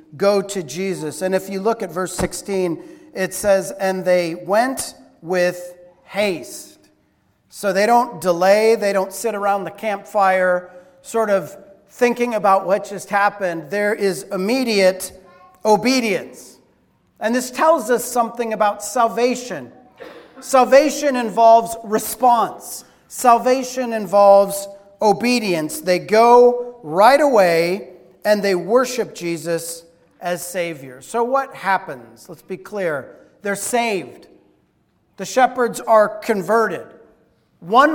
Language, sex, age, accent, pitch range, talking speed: English, male, 40-59, American, 190-245 Hz, 115 wpm